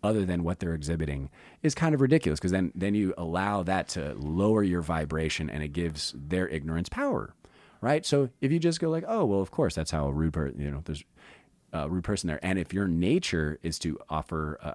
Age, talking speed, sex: 30-49, 230 wpm, male